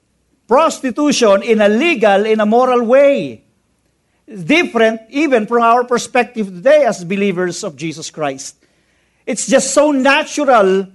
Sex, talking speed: male, 125 wpm